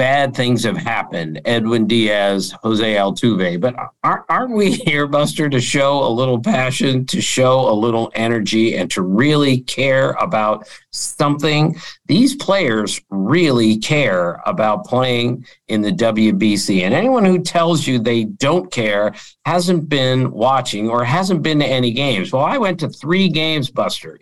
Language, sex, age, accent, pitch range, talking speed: English, male, 50-69, American, 130-175 Hz, 155 wpm